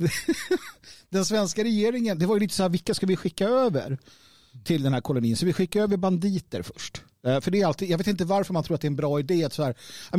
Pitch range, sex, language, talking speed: 145-210 Hz, male, Swedish, 255 wpm